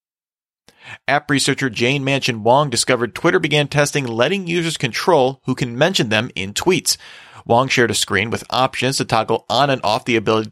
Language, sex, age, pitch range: English, male, 40-59, 115-145 Hz